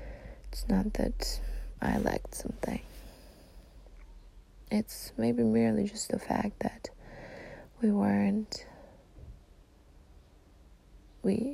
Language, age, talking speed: English, 20-39, 85 wpm